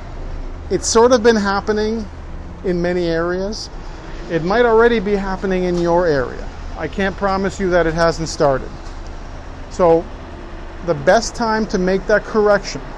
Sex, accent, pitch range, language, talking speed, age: male, American, 155-195 Hz, English, 150 wpm, 50-69